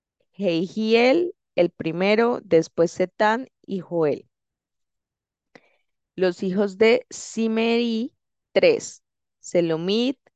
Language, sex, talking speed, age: Spanish, female, 75 wpm, 20-39